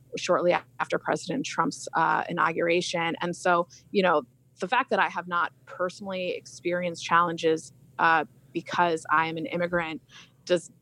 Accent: American